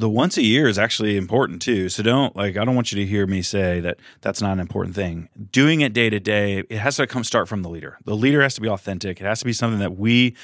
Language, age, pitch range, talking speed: English, 30-49, 95-120 Hz, 295 wpm